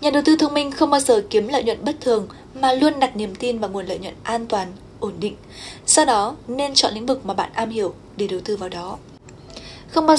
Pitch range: 215-295 Hz